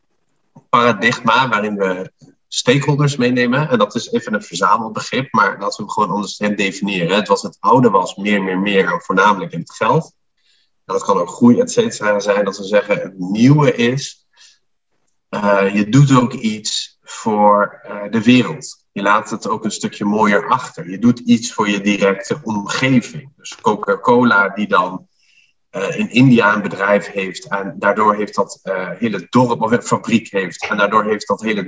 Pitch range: 105-145 Hz